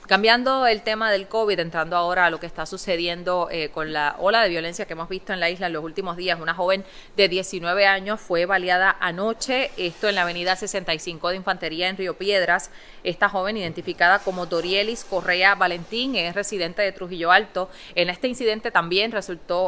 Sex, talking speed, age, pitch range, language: female, 190 wpm, 20-39, 175-215 Hz, English